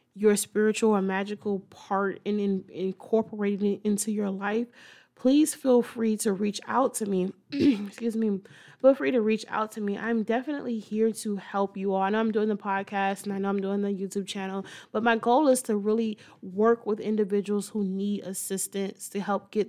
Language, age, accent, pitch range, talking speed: English, 20-39, American, 190-215 Hz, 200 wpm